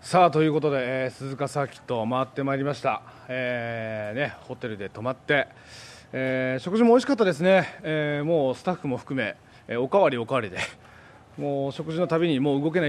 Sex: male